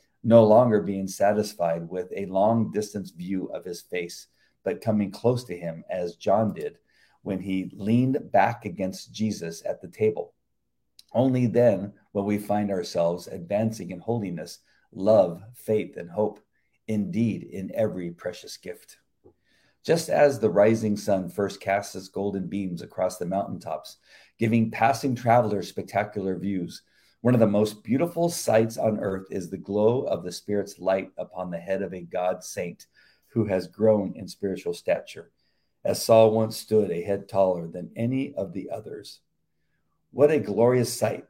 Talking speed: 160 wpm